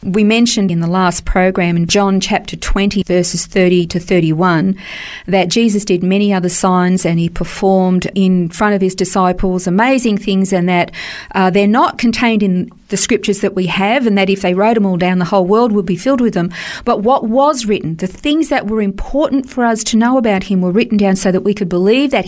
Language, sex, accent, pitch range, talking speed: English, female, Australian, 185-230 Hz, 220 wpm